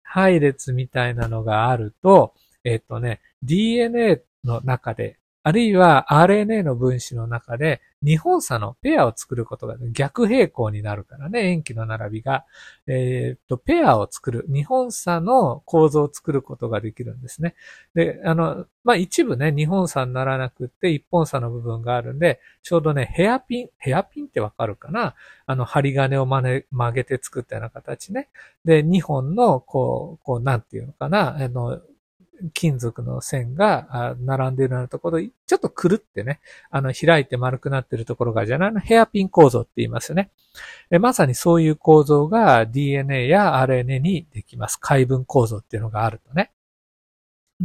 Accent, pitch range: native, 125-180 Hz